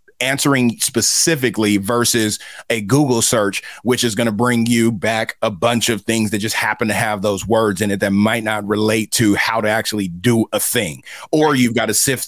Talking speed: 205 wpm